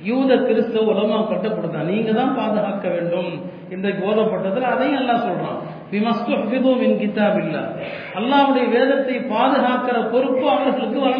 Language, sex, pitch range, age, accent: Tamil, male, 205-250 Hz, 50-69, native